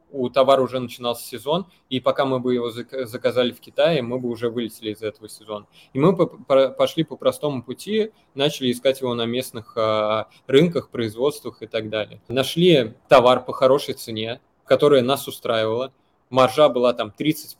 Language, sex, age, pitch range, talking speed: Russian, male, 20-39, 120-145 Hz, 165 wpm